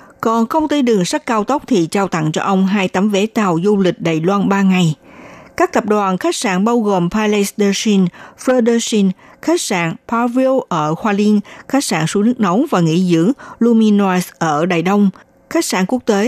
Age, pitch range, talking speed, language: 60-79, 180-240 Hz, 205 wpm, Vietnamese